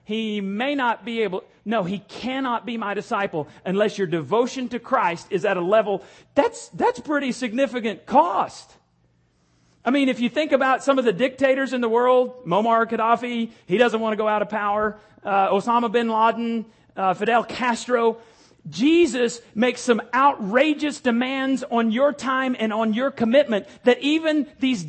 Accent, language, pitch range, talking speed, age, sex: American, English, 200-260 Hz, 170 wpm, 40-59, male